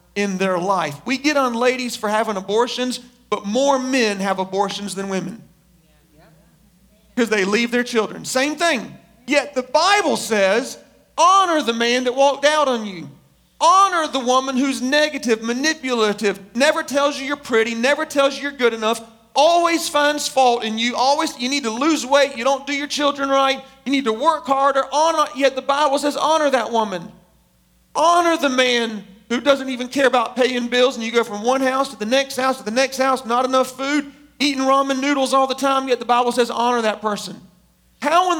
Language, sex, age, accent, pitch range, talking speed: English, male, 40-59, American, 210-275 Hz, 195 wpm